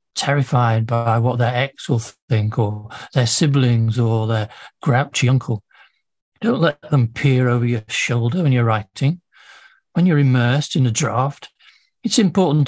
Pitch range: 120-155 Hz